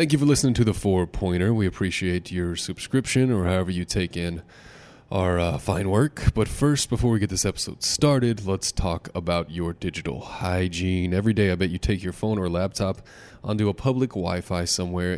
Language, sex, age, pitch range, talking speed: English, male, 20-39, 85-105 Hz, 200 wpm